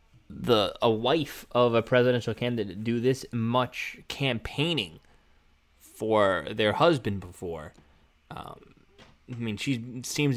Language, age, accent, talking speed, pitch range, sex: English, 20-39, American, 115 wpm, 110-155 Hz, male